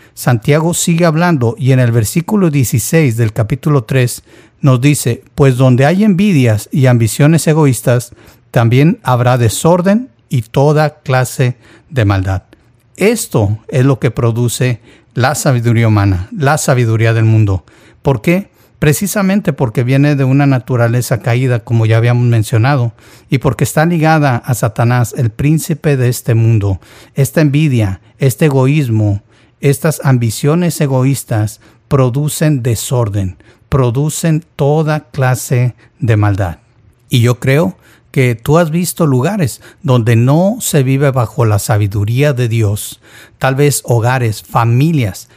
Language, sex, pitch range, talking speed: Spanish, male, 115-150 Hz, 130 wpm